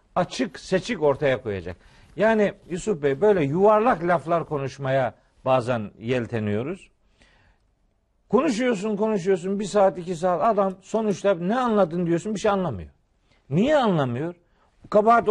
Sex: male